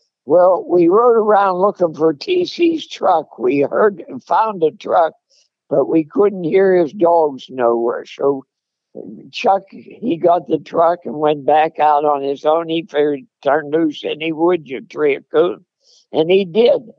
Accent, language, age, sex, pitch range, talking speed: American, English, 60-79, male, 145-210 Hz, 170 wpm